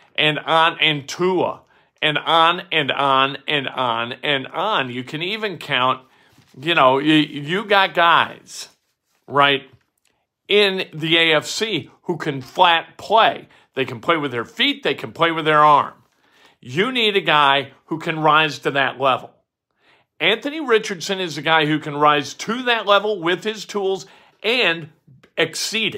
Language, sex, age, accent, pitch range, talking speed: English, male, 50-69, American, 155-230 Hz, 155 wpm